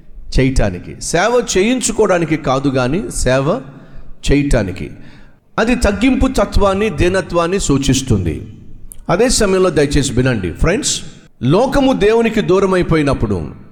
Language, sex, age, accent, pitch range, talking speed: Telugu, male, 50-69, native, 135-195 Hz, 90 wpm